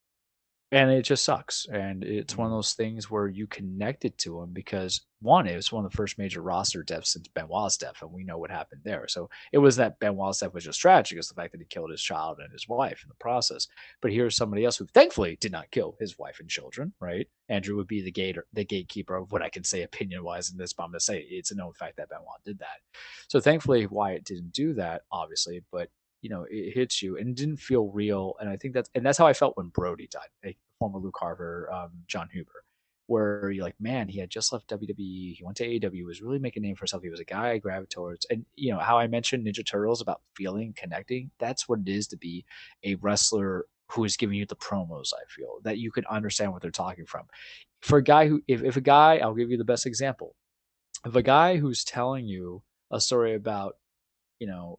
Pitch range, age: 95-120 Hz, 30-49